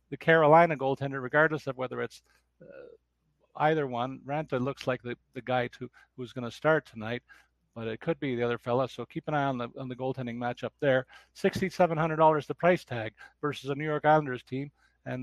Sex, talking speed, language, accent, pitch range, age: male, 200 wpm, English, American, 130-165 Hz, 40-59